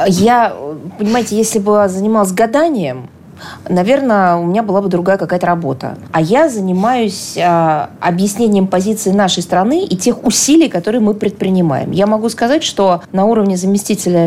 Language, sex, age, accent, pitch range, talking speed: Russian, female, 20-39, native, 170-220 Hz, 145 wpm